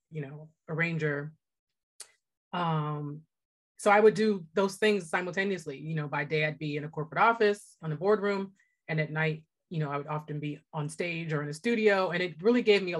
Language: English